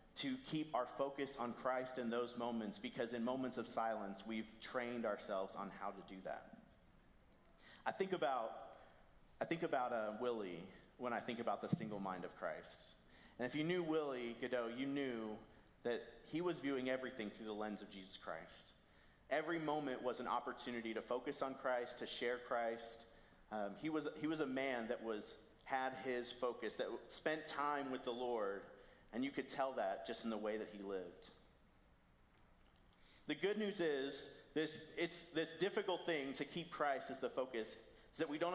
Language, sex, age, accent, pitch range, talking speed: English, male, 40-59, American, 120-160 Hz, 185 wpm